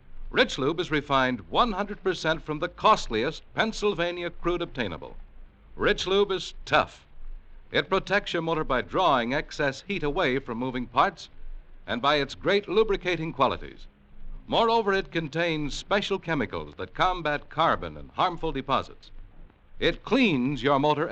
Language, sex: English, male